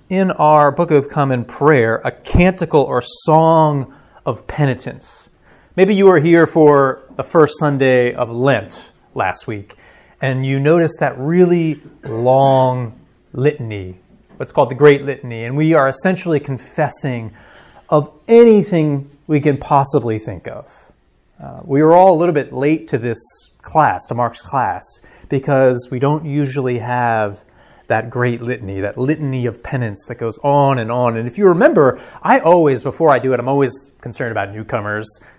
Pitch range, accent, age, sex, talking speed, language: 120-155 Hz, American, 30-49, male, 160 wpm, English